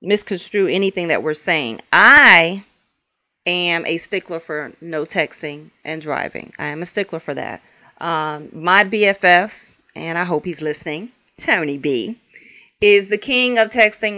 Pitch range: 155-205 Hz